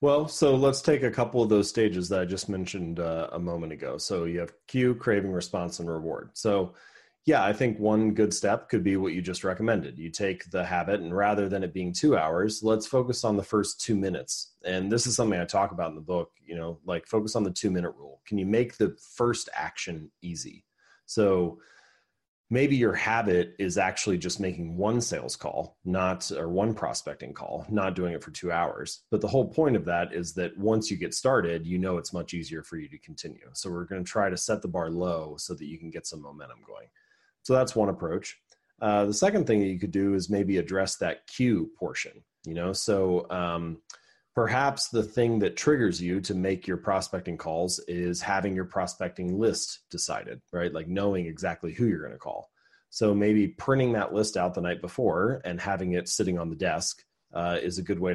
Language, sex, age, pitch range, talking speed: English, male, 30-49, 85-105 Hz, 220 wpm